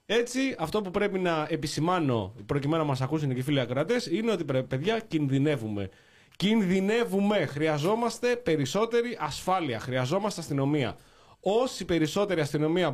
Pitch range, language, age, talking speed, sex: 135-195 Hz, Greek, 20-39, 120 wpm, male